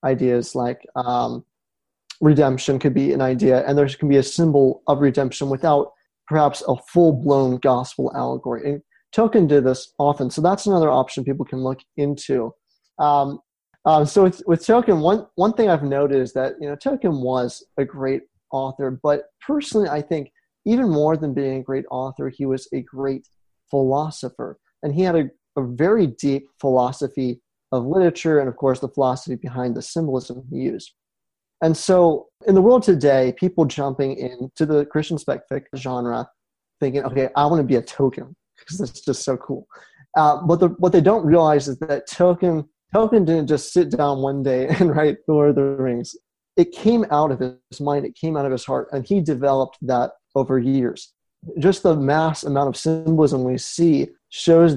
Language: English